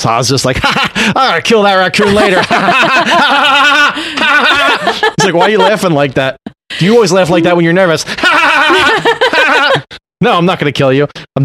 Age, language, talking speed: 30-49, English, 255 wpm